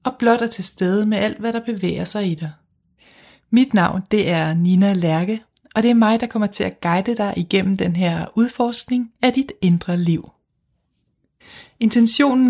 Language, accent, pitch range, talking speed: Danish, native, 180-210 Hz, 185 wpm